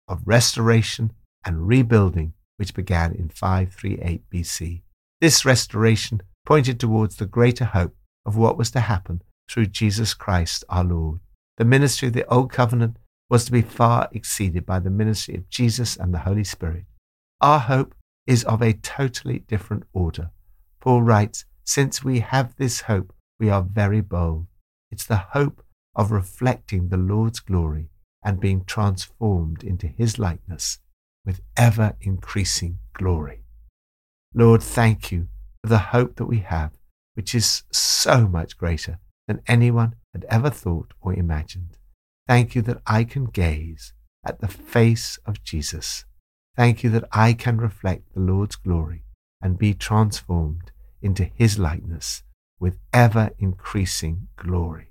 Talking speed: 145 wpm